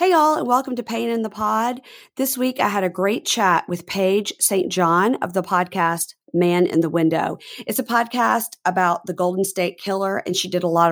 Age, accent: 40-59, American